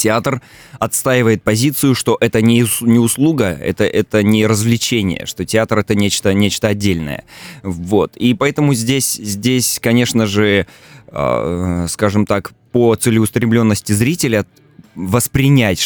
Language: Russian